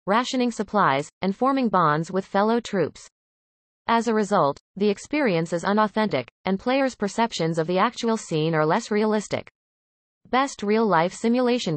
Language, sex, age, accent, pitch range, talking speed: English, female, 30-49, American, 160-230 Hz, 145 wpm